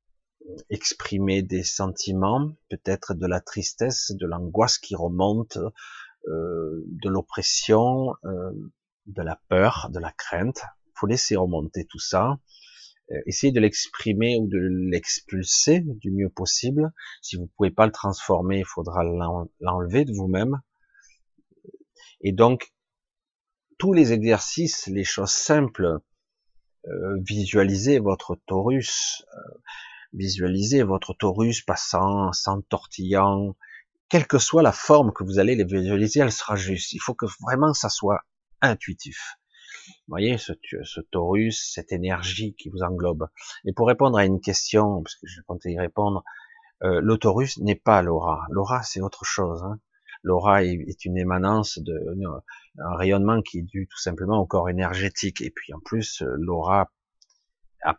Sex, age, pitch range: male, 40-59, 95-115 Hz